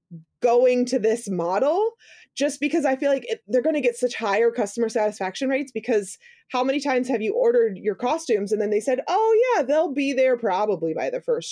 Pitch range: 185-250 Hz